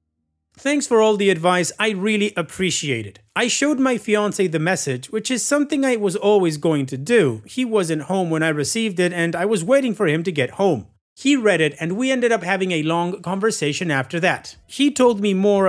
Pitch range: 160-220 Hz